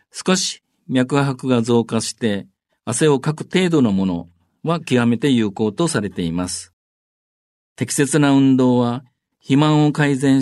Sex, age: male, 50-69